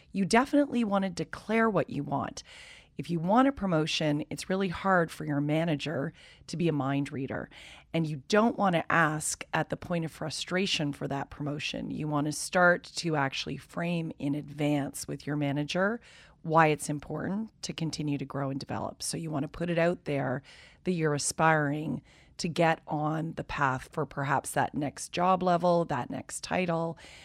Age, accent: 40-59, American